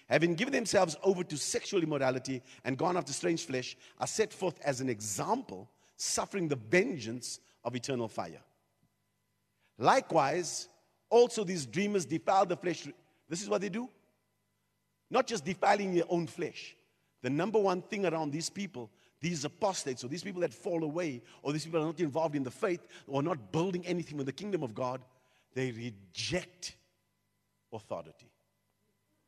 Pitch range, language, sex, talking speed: 130-195 Hz, English, male, 160 wpm